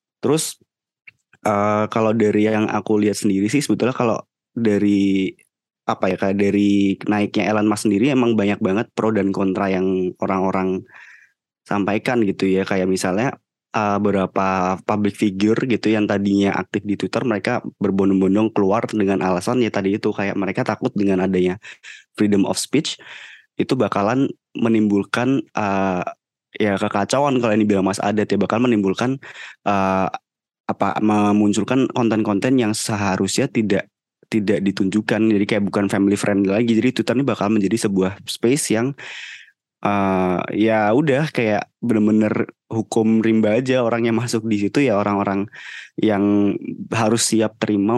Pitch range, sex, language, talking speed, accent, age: 100-110 Hz, male, Indonesian, 145 wpm, native, 20-39